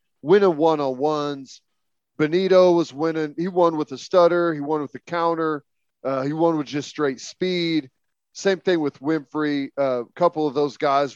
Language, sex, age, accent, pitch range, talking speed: English, male, 40-59, American, 145-180 Hz, 170 wpm